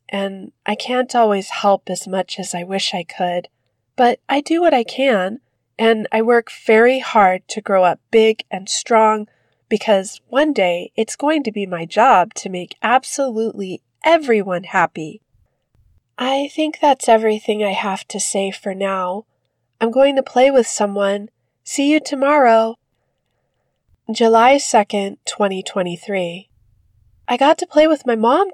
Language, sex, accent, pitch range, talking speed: English, female, American, 185-240 Hz, 150 wpm